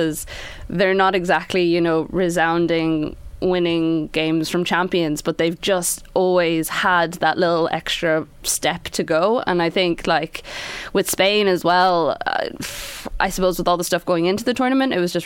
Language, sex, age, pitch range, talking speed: English, female, 20-39, 155-180 Hz, 175 wpm